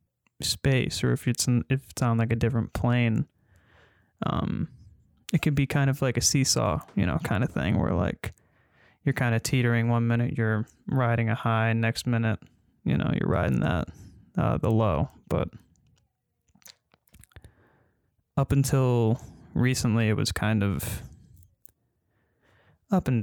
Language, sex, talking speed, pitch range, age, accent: English, male, 145 wpm, 110-120 Hz, 20-39, American